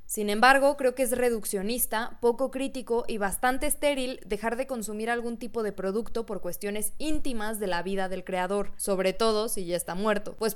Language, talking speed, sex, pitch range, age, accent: Spanish, 190 wpm, female, 195-240 Hz, 20-39, Mexican